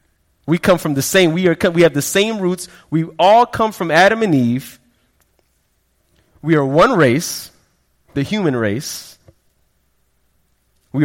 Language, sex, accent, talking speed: English, male, American, 145 wpm